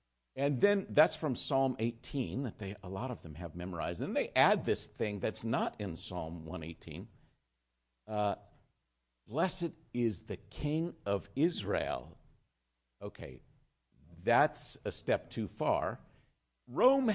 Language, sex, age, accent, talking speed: English, male, 50-69, American, 135 wpm